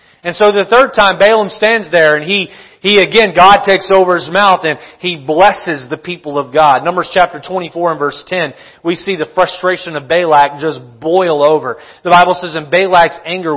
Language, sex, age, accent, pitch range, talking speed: English, male, 40-59, American, 160-205 Hz, 200 wpm